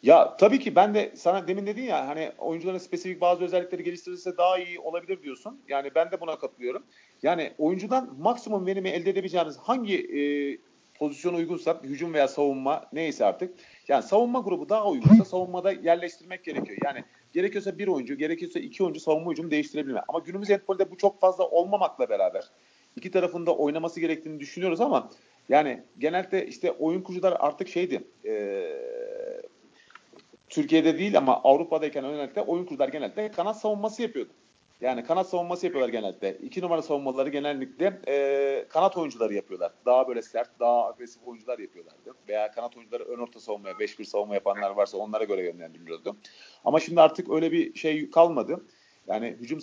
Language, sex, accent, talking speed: Turkish, male, native, 160 wpm